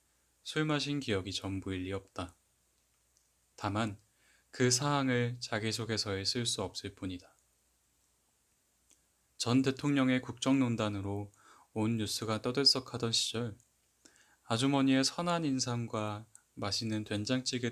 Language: Korean